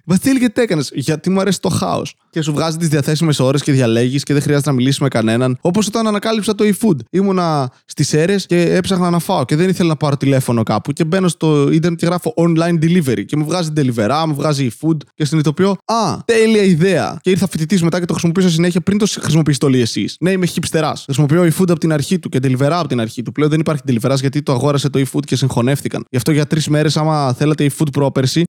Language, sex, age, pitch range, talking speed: Greek, male, 20-39, 135-170 Hz, 230 wpm